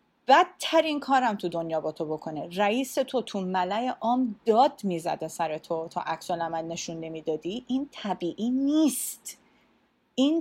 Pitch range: 180-275 Hz